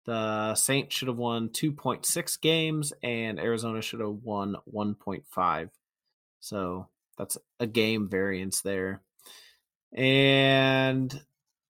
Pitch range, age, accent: 110-135 Hz, 20-39, American